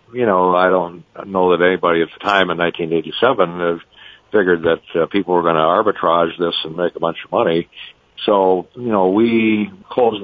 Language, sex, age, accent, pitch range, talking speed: English, male, 60-79, American, 85-95 Hz, 190 wpm